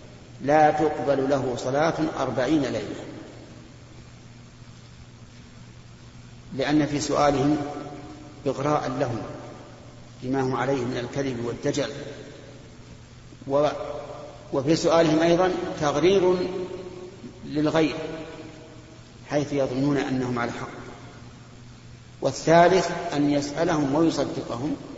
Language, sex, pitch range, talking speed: Arabic, male, 130-155 Hz, 75 wpm